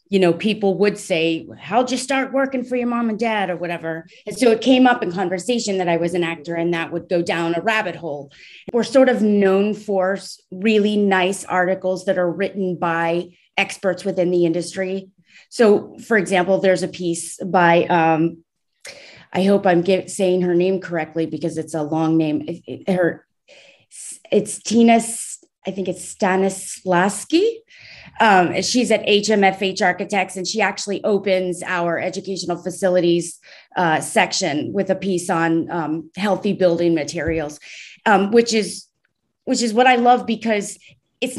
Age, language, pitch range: 30-49, English, 175-210 Hz